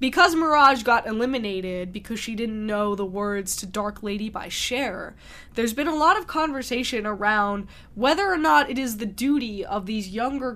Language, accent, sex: English, American, female